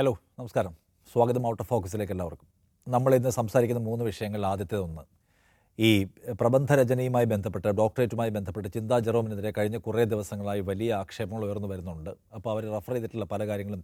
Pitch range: 100-125 Hz